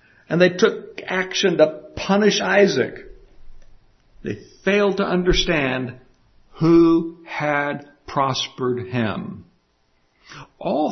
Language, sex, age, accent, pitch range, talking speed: English, male, 60-79, American, 115-175 Hz, 90 wpm